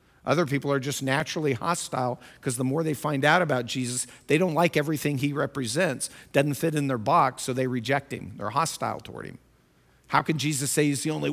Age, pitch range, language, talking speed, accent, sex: 50-69, 115-150 Hz, English, 210 wpm, American, male